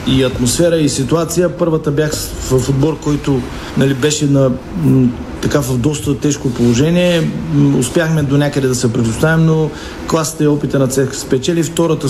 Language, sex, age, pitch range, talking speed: Bulgarian, male, 40-59, 135-155 Hz, 165 wpm